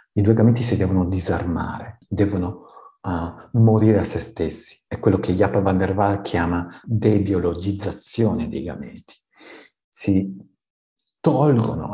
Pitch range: 90-120 Hz